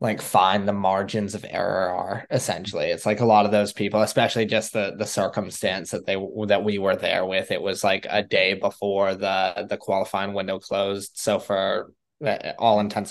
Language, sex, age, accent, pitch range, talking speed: English, male, 20-39, American, 95-105 Hz, 190 wpm